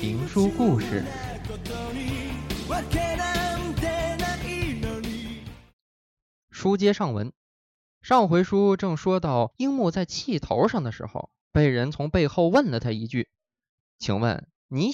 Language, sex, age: Chinese, male, 20-39